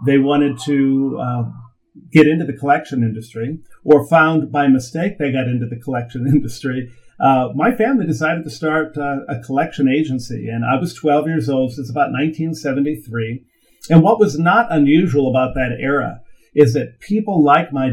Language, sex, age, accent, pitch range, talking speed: English, male, 50-69, American, 125-150 Hz, 175 wpm